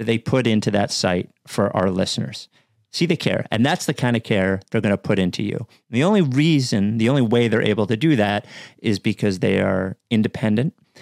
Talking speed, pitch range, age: 220 wpm, 100-120 Hz, 40-59